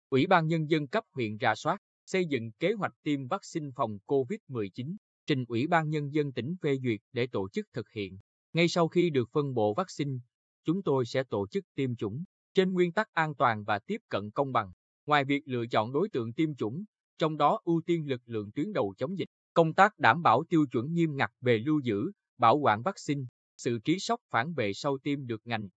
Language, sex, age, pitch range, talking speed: Vietnamese, male, 20-39, 115-165 Hz, 225 wpm